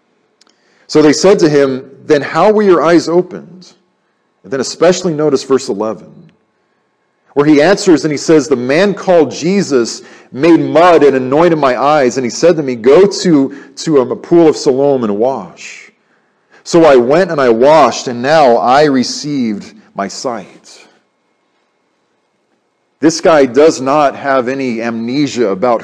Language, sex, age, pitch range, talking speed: English, male, 40-59, 130-180 Hz, 155 wpm